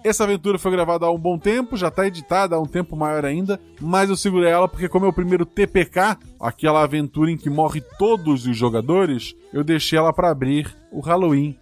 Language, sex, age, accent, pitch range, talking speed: Portuguese, male, 20-39, Brazilian, 130-170 Hz, 210 wpm